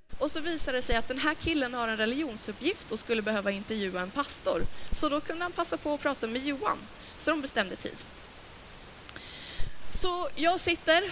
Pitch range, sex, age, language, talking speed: 215-285 Hz, female, 30-49, Swedish, 190 wpm